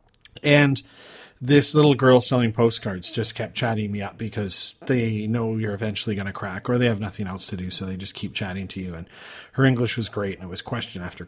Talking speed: 230 wpm